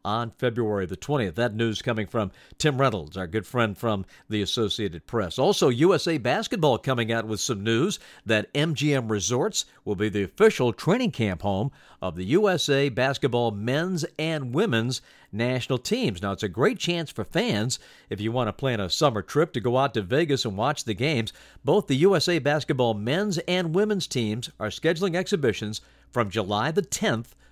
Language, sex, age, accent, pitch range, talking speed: English, male, 50-69, American, 105-150 Hz, 180 wpm